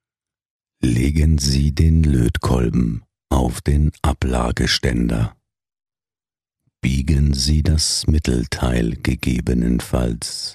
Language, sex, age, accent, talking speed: German, male, 60-79, German, 70 wpm